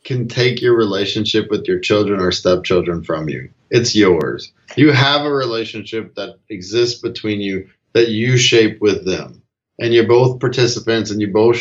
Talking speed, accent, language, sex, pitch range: 170 wpm, American, English, male, 105-120 Hz